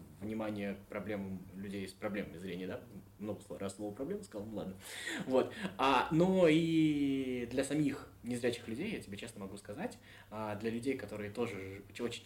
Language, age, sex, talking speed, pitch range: Russian, 20-39, male, 150 wpm, 95-115 Hz